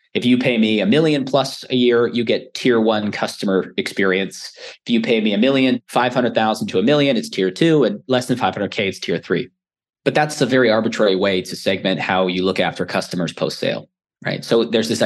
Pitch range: 105-130 Hz